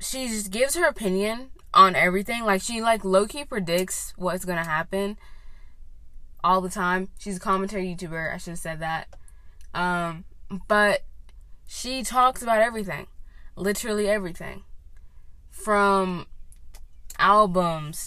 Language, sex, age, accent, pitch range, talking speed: English, female, 20-39, American, 150-200 Hz, 120 wpm